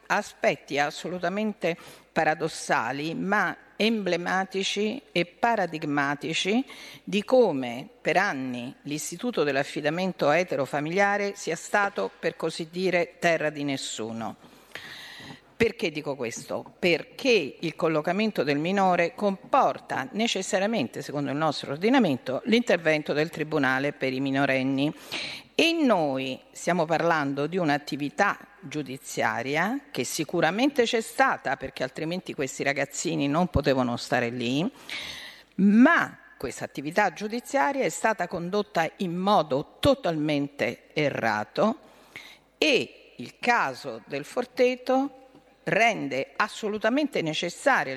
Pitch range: 145-210 Hz